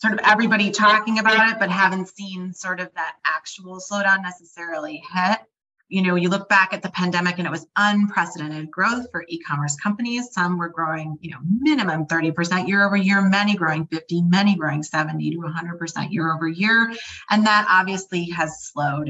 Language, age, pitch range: English, 30-49, 170-215 Hz